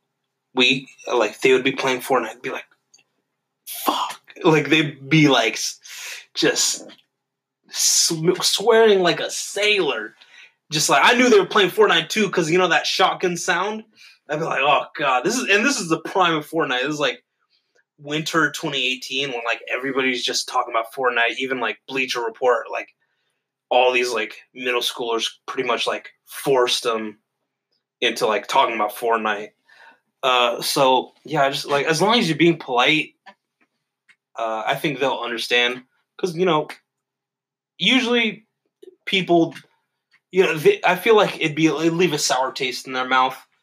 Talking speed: 160 wpm